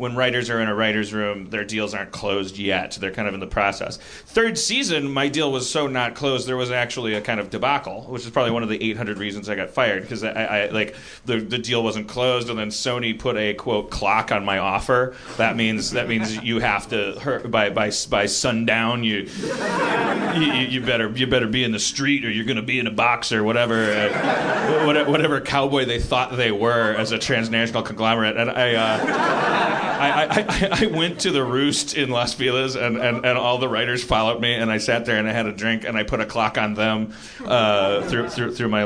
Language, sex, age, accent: English, male, 30-49, American